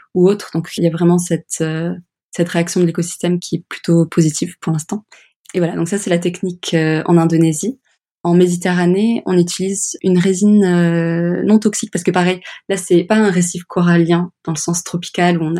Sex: female